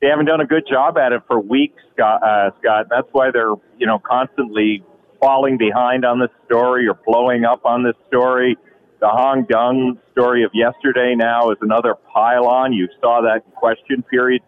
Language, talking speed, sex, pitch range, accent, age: English, 190 wpm, male, 110-130 Hz, American, 40-59